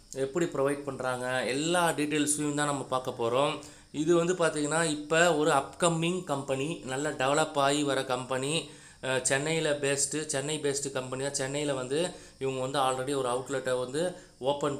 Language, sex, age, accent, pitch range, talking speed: Tamil, male, 20-39, native, 135-160 Hz, 145 wpm